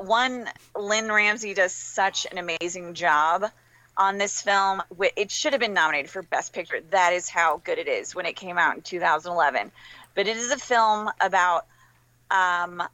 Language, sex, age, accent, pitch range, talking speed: English, female, 30-49, American, 170-205 Hz, 175 wpm